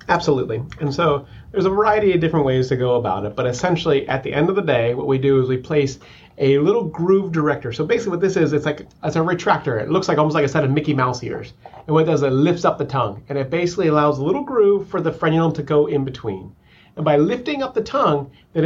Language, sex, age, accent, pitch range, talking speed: English, male, 30-49, American, 135-170 Hz, 265 wpm